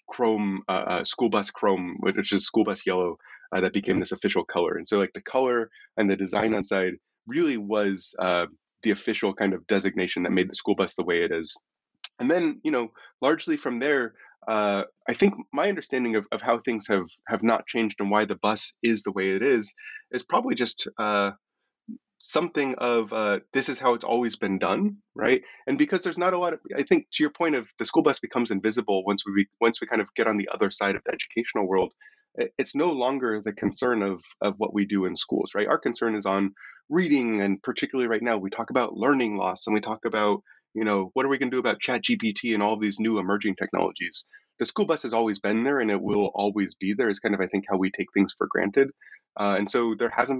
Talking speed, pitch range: 235 wpm, 100-135 Hz